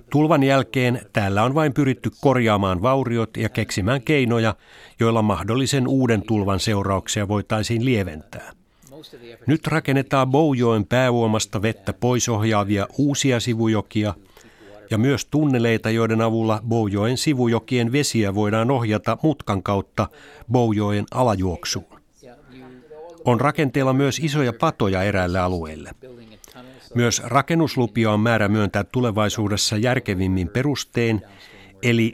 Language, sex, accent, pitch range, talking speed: Finnish, male, native, 100-130 Hz, 105 wpm